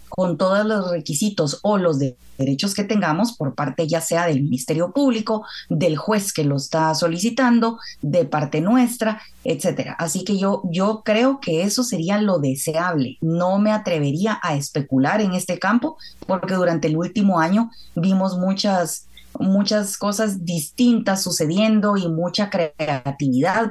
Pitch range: 155-210 Hz